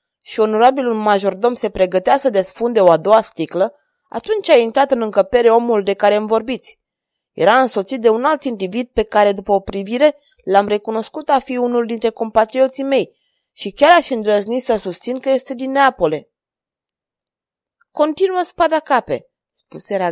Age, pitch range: 20-39, 185-250 Hz